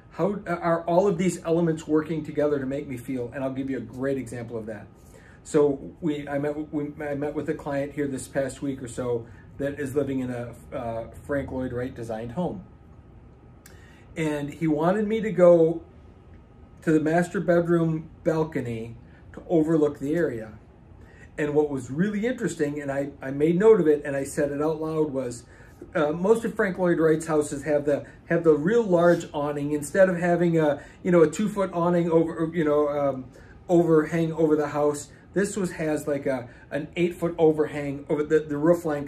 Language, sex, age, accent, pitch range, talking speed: English, male, 40-59, American, 130-165 Hz, 195 wpm